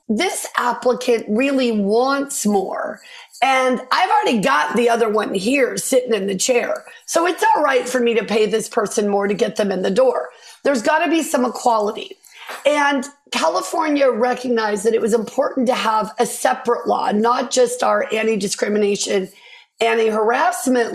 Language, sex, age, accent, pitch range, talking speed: English, female, 40-59, American, 215-270 Hz, 165 wpm